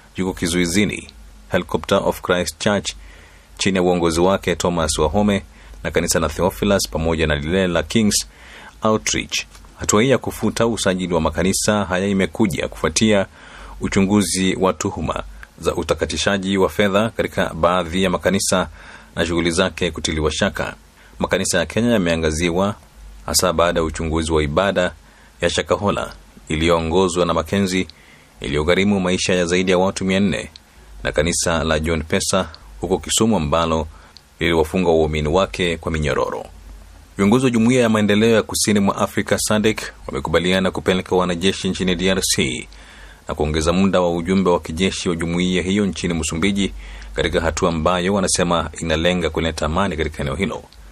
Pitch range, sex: 80-95 Hz, male